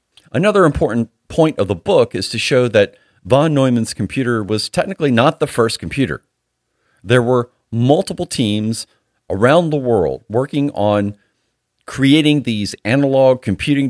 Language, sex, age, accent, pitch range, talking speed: English, male, 40-59, American, 105-140 Hz, 140 wpm